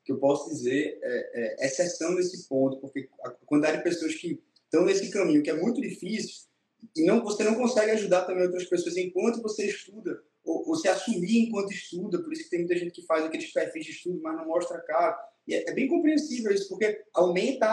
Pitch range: 170-235 Hz